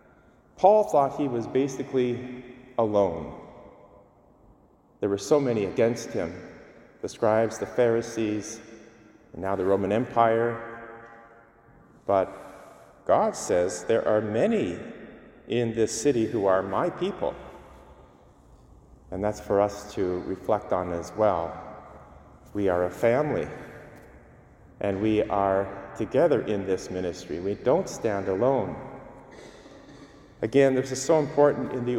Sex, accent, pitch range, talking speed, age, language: male, American, 100-130 Hz, 120 wpm, 40-59, English